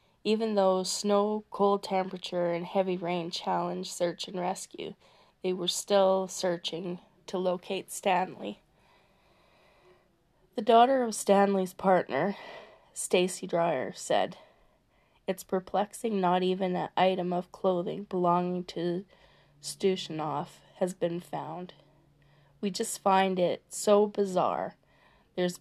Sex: female